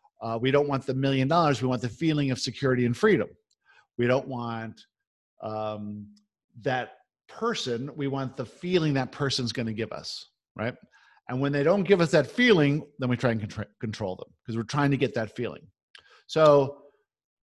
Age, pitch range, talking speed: 50-69, 125-160 Hz, 185 wpm